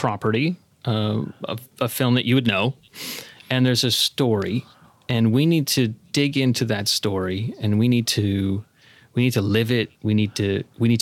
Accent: American